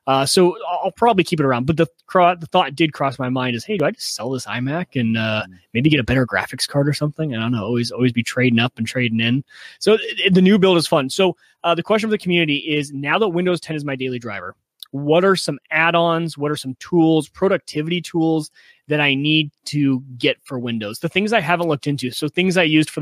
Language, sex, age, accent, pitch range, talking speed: English, male, 30-49, American, 130-165 Hz, 255 wpm